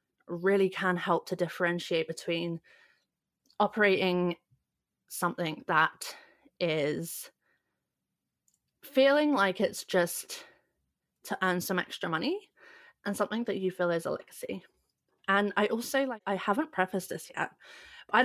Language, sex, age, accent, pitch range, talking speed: English, female, 20-39, British, 175-205 Hz, 120 wpm